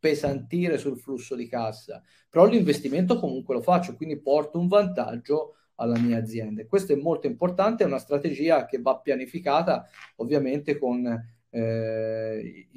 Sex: male